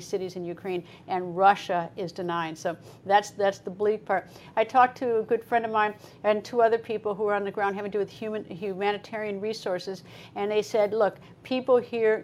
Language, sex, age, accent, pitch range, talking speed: English, female, 50-69, American, 185-210 Hz, 210 wpm